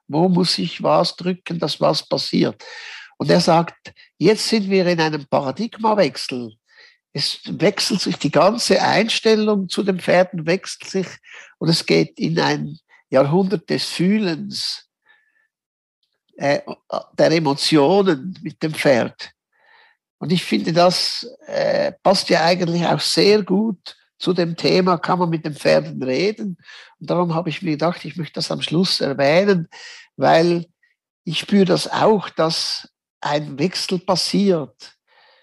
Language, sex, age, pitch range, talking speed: German, male, 60-79, 165-200 Hz, 140 wpm